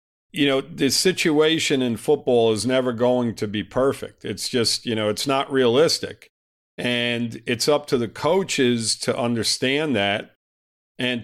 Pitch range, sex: 105-135 Hz, male